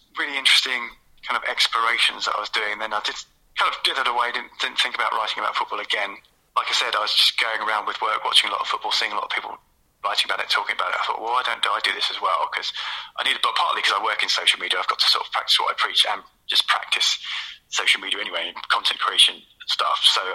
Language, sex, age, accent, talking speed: English, male, 30-49, British, 275 wpm